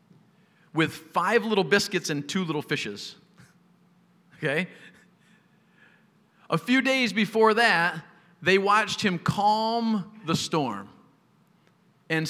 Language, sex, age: English, male, 40-59